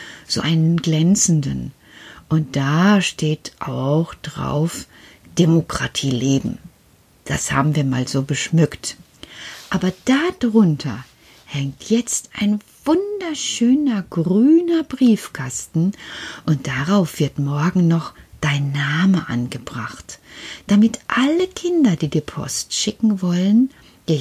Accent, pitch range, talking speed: German, 140-215 Hz, 100 wpm